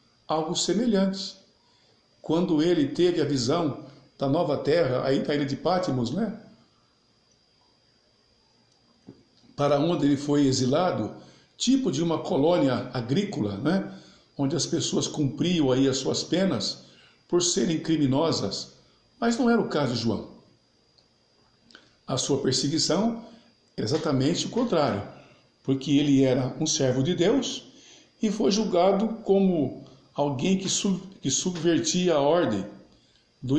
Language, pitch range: Portuguese, 130-180 Hz